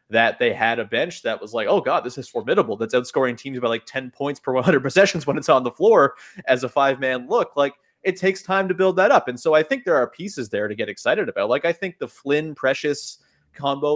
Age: 20-39